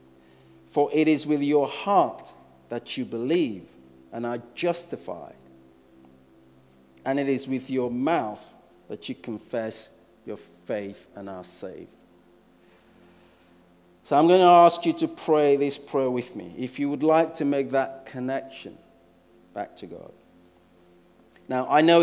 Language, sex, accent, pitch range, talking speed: English, male, British, 85-140 Hz, 140 wpm